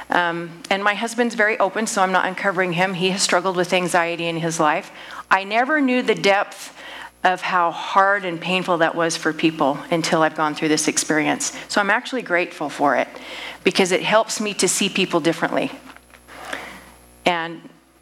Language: English